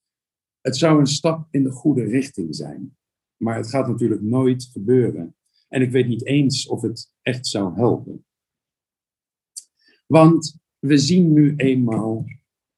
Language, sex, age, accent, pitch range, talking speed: Dutch, male, 50-69, Dutch, 110-150 Hz, 140 wpm